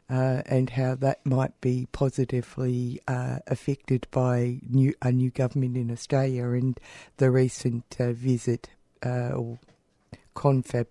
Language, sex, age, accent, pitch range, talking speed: English, female, 60-79, Australian, 120-135 Hz, 125 wpm